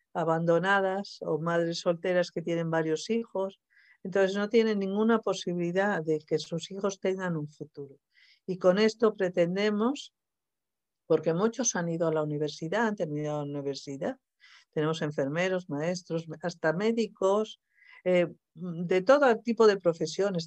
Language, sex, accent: Spanish, female, Spanish